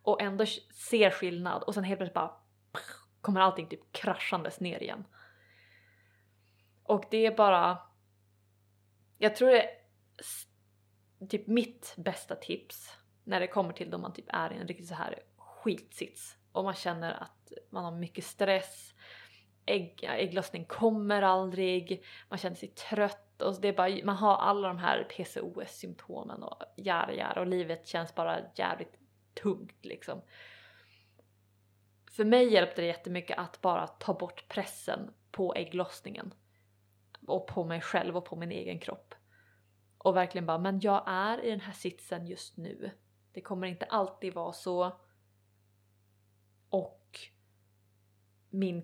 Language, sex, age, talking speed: Swedish, female, 20-39, 145 wpm